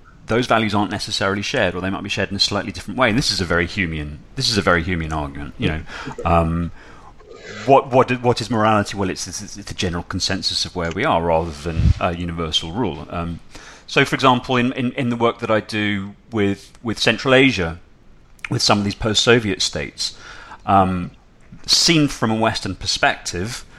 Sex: male